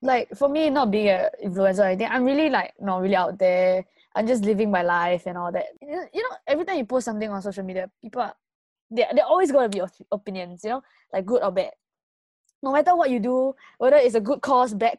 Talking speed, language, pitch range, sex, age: 240 wpm, English, 190-245 Hz, female, 20-39